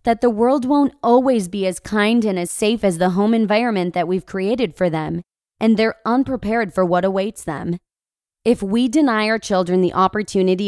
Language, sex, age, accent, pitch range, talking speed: English, female, 20-39, American, 185-230 Hz, 190 wpm